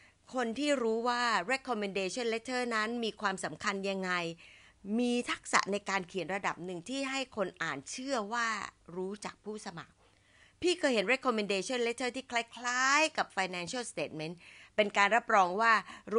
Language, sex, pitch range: Thai, female, 170-235 Hz